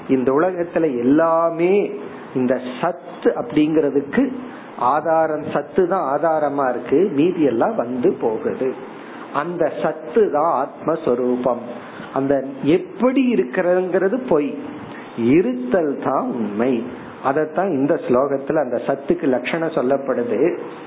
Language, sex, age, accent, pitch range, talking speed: Tamil, male, 50-69, native, 145-185 Hz, 95 wpm